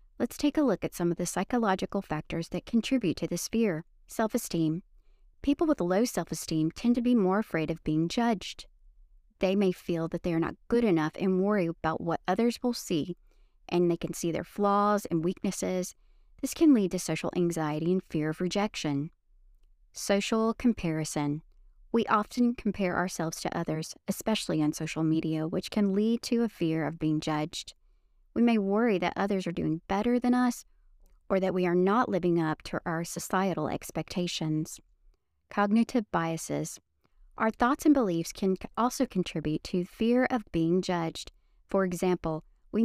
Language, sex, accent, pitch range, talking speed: English, female, American, 160-220 Hz, 170 wpm